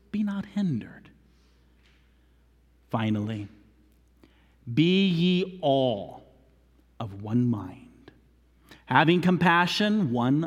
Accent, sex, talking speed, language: American, male, 75 wpm, English